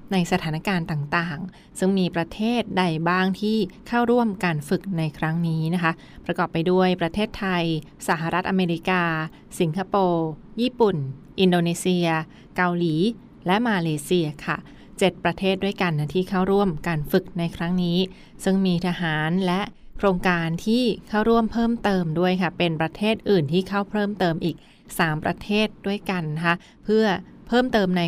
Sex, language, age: female, Thai, 20-39